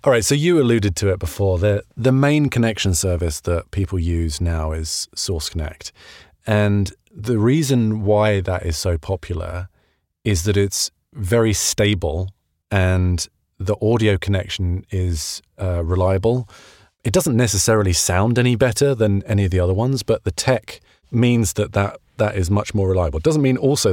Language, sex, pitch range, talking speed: English, male, 90-110 Hz, 170 wpm